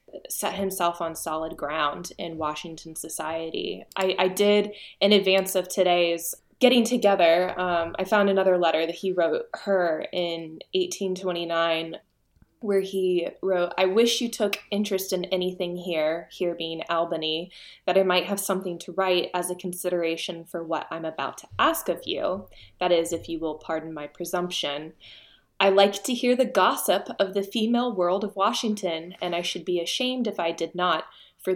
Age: 20-39